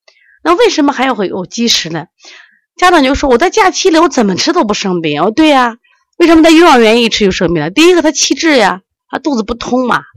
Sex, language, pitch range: female, Chinese, 180-285 Hz